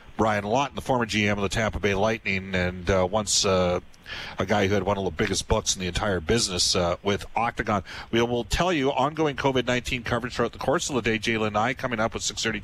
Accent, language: American, English